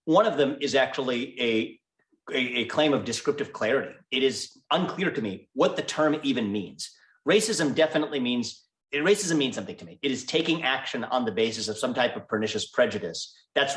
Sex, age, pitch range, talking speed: male, 30-49, 110-145 Hz, 185 wpm